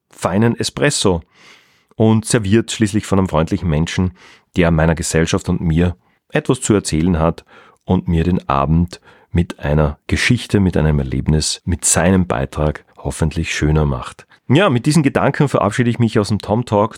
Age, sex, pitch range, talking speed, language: 40-59, male, 90-120 Hz, 160 wpm, German